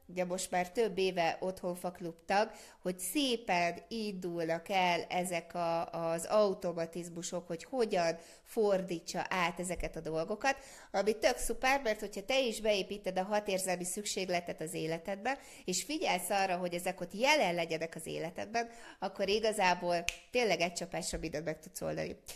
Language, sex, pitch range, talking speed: Hungarian, female, 170-210 Hz, 140 wpm